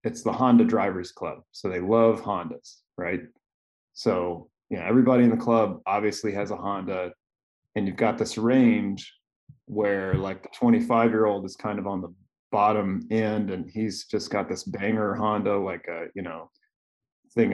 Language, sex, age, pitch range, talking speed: English, male, 20-39, 90-115 Hz, 170 wpm